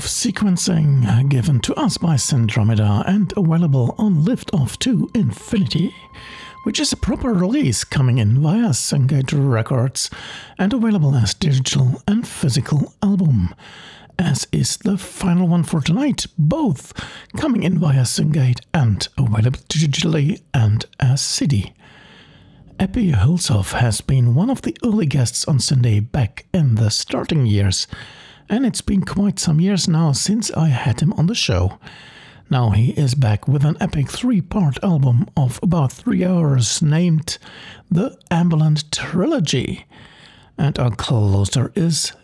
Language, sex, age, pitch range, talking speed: English, male, 60-79, 120-175 Hz, 140 wpm